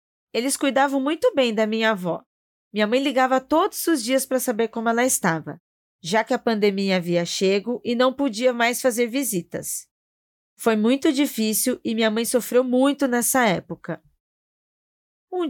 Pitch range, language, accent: 190-250 Hz, Portuguese, Brazilian